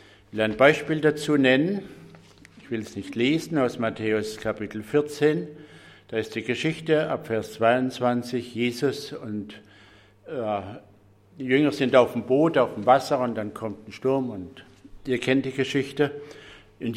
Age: 60-79